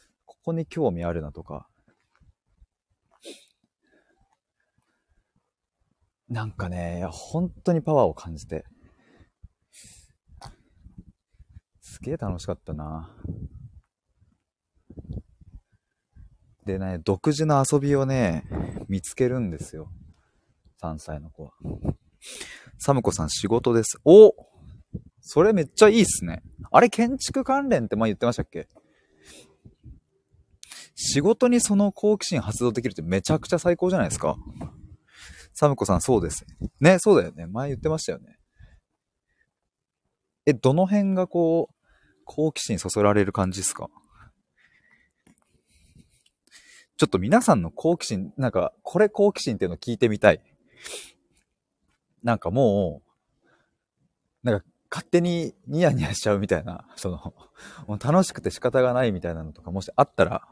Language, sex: Japanese, male